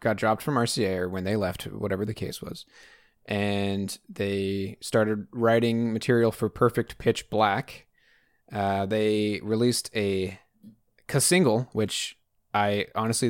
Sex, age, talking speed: male, 20-39, 135 wpm